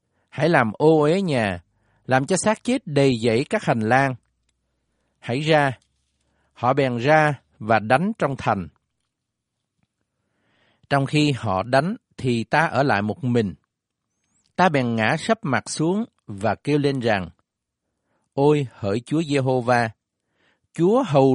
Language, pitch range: Vietnamese, 115-160 Hz